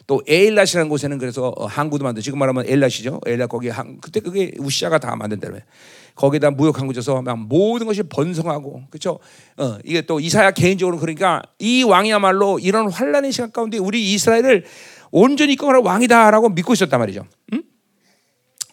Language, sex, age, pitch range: Korean, male, 40-59, 155-245 Hz